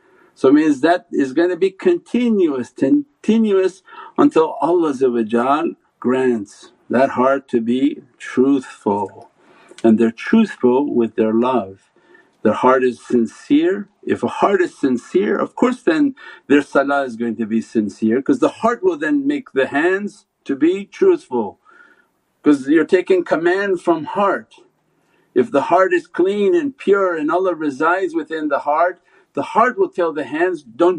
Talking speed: 155 wpm